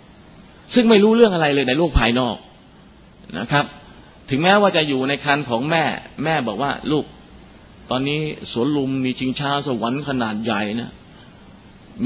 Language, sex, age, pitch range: Thai, male, 30-49, 125-155 Hz